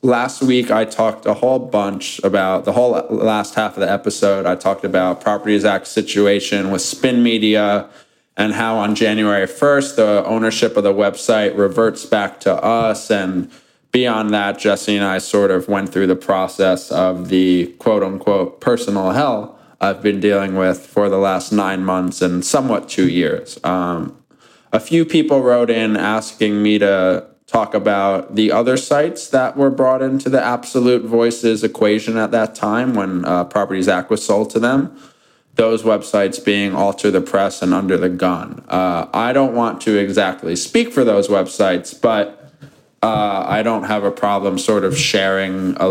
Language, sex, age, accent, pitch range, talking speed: English, male, 20-39, American, 95-115 Hz, 175 wpm